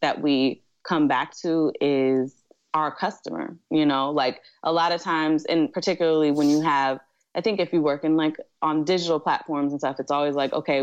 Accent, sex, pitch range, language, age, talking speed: American, female, 135-165 Hz, English, 20-39, 200 wpm